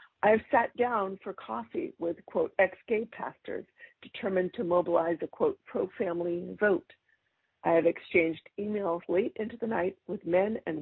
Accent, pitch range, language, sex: American, 170-210 Hz, English, female